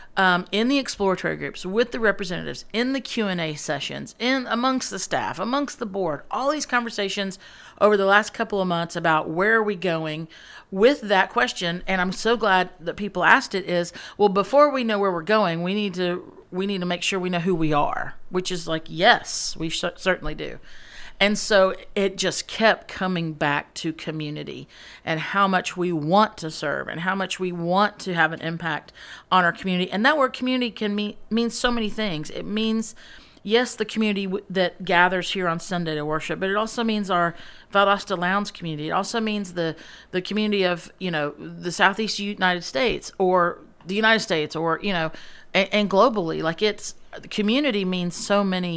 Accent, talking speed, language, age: American, 200 wpm, English, 40-59